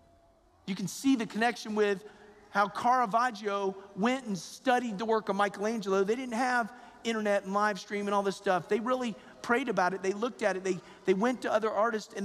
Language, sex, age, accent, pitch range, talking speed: English, male, 40-59, American, 195-245 Hz, 205 wpm